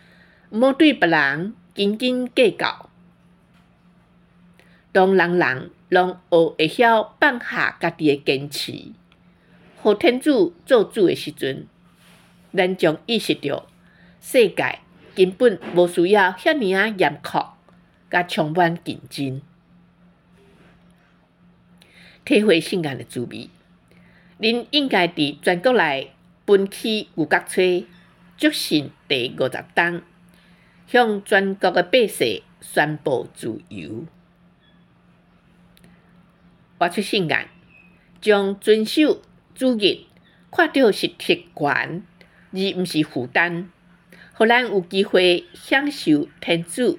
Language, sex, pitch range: Chinese, female, 170-225 Hz